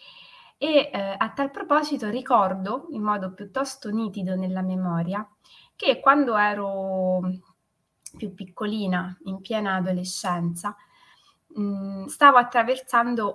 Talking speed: 100 wpm